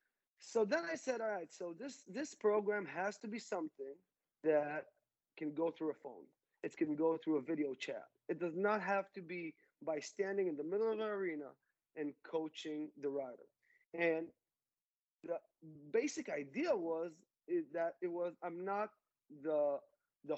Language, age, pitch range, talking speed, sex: English, 30-49, 155-205 Hz, 170 wpm, male